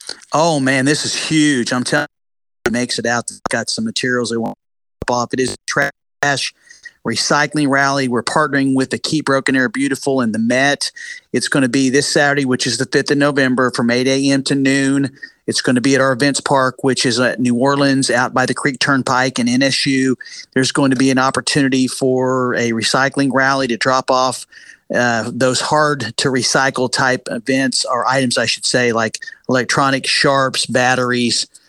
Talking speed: 195 wpm